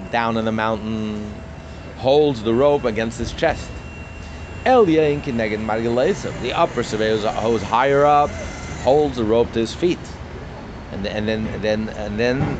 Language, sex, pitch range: English, male, 105-125 Hz